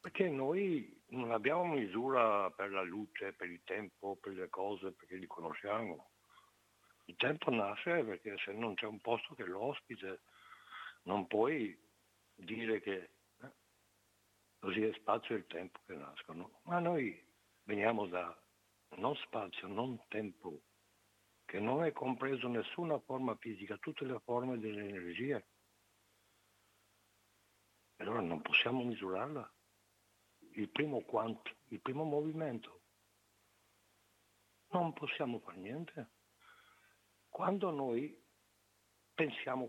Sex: male